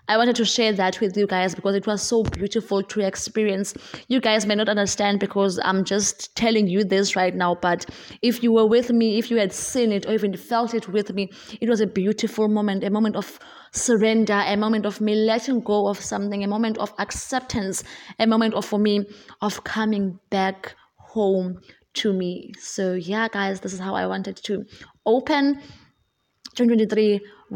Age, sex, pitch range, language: 20-39, female, 195-220 Hz, English